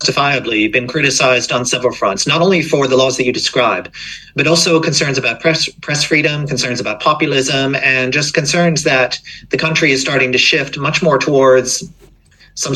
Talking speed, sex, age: 180 wpm, male, 40-59